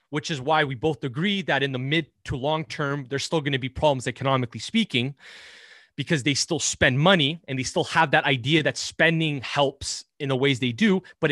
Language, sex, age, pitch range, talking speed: English, male, 30-49, 125-155 Hz, 210 wpm